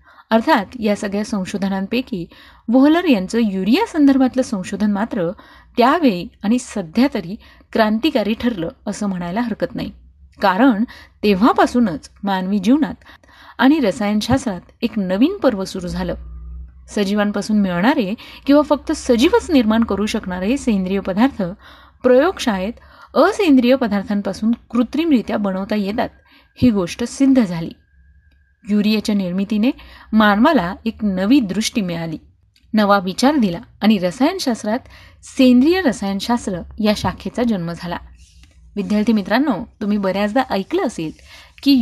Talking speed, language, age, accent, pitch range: 110 wpm, Marathi, 30-49, native, 190-255 Hz